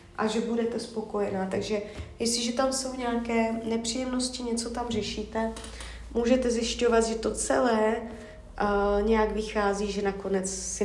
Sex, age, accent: female, 30-49, native